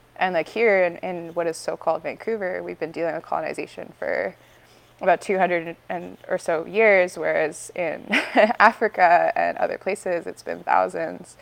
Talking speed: 160 wpm